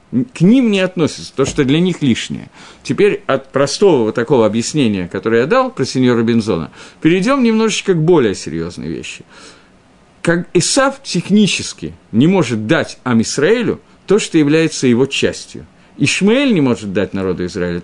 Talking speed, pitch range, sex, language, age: 150 wpm, 130-190 Hz, male, Russian, 50-69